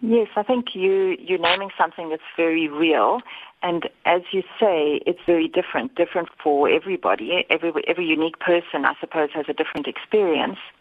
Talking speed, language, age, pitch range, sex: 165 wpm, English, 40-59, 155-195 Hz, female